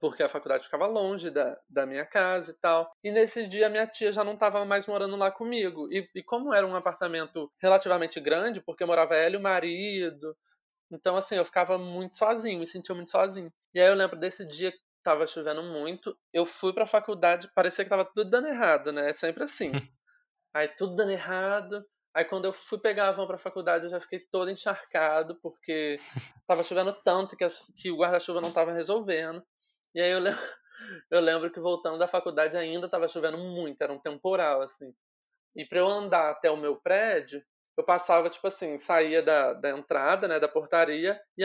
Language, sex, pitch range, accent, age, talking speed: Portuguese, male, 165-195 Hz, Brazilian, 20-39, 205 wpm